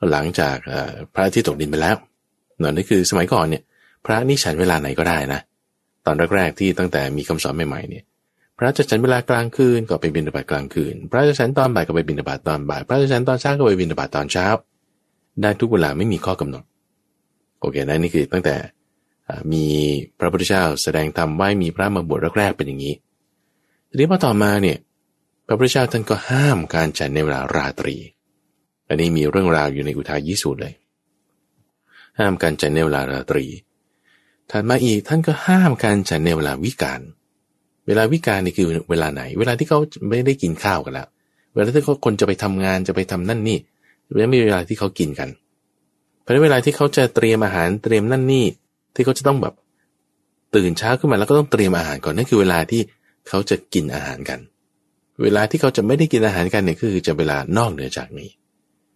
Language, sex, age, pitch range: English, male, 20-39, 80-120 Hz